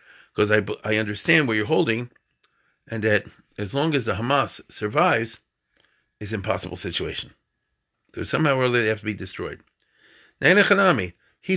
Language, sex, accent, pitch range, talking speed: English, male, American, 110-145 Hz, 160 wpm